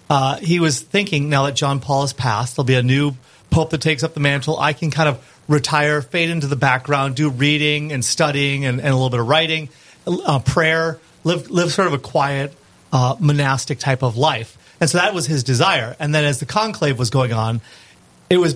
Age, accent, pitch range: 40-59, American, 130-160 Hz